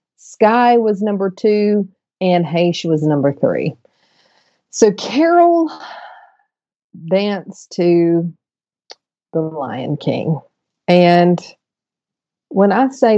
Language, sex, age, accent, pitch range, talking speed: English, female, 40-59, American, 155-205 Hz, 90 wpm